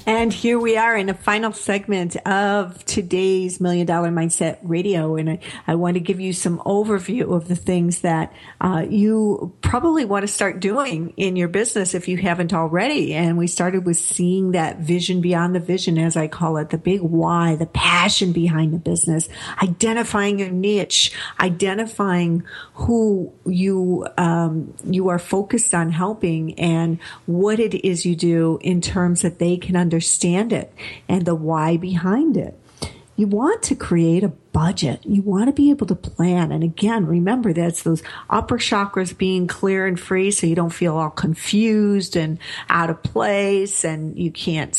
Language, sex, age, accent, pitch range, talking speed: English, female, 50-69, American, 165-200 Hz, 175 wpm